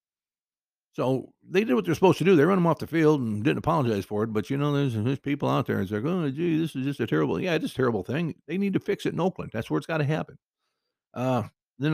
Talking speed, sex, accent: 275 wpm, male, American